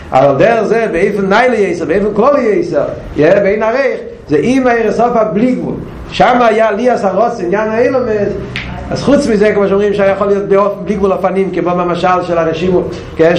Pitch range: 195-245 Hz